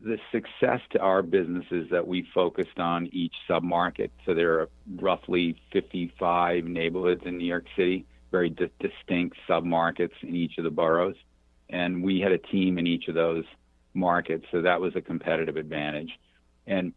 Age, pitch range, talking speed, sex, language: 50-69, 80-90 Hz, 170 wpm, male, English